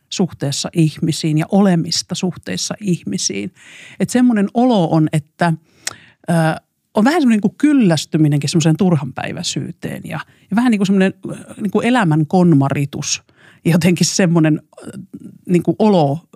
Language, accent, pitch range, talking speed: Finnish, native, 155-185 Hz, 130 wpm